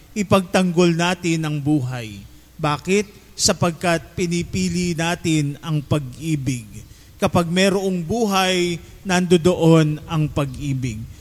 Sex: male